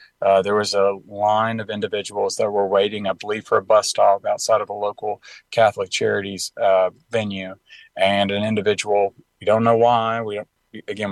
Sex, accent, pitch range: male, American, 100-115 Hz